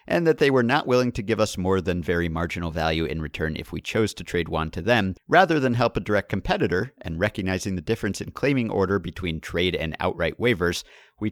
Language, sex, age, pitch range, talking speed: English, male, 50-69, 90-115 Hz, 230 wpm